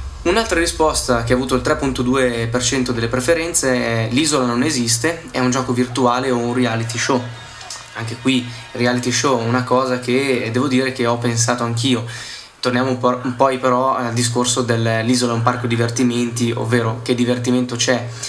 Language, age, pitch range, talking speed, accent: Italian, 20-39, 115-130 Hz, 165 wpm, native